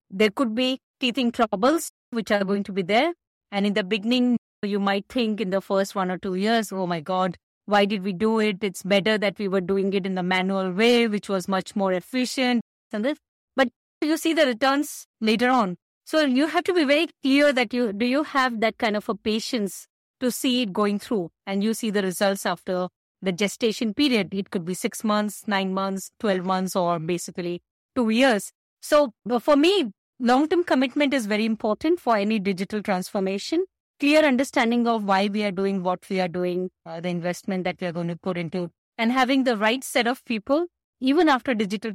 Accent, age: Indian, 20-39